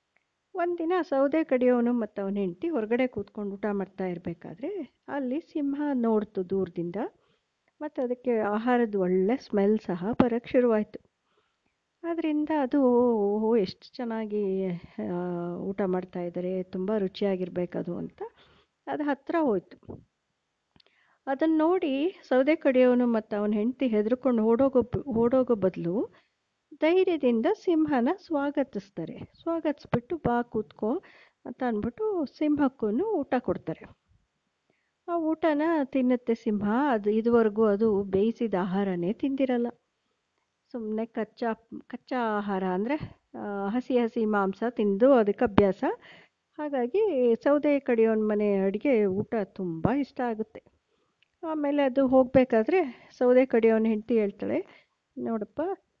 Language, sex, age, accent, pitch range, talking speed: Kannada, female, 50-69, native, 205-280 Hz, 100 wpm